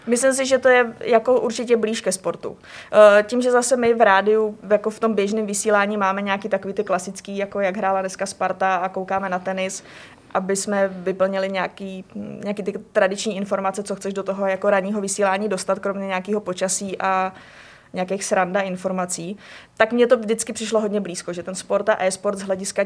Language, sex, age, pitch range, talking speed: Czech, female, 20-39, 190-215 Hz, 190 wpm